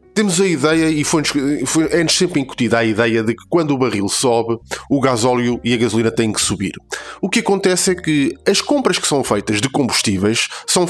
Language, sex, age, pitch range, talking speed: Portuguese, male, 20-39, 140-185 Hz, 200 wpm